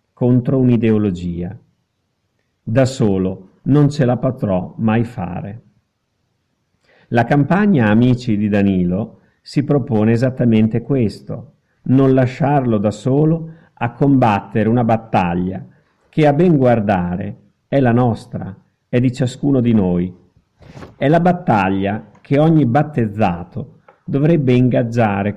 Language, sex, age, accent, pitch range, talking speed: Italian, male, 50-69, native, 105-135 Hz, 110 wpm